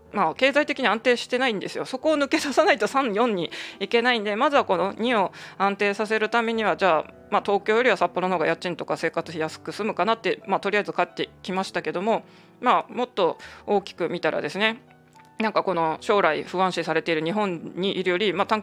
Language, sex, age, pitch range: Japanese, female, 20-39, 165-220 Hz